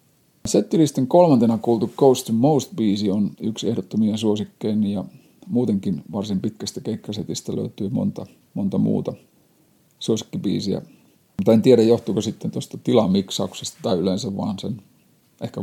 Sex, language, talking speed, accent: male, Finnish, 125 wpm, native